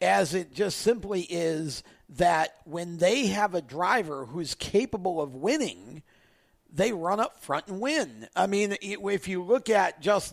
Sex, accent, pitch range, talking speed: male, American, 170-210 Hz, 165 wpm